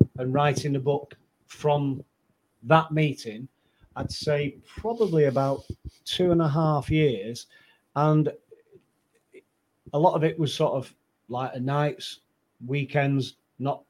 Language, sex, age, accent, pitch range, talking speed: English, male, 40-59, British, 125-155 Hz, 120 wpm